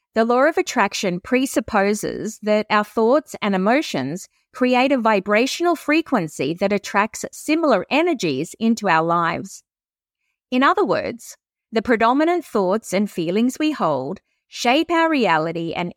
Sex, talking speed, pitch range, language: female, 130 wpm, 190-265 Hz, English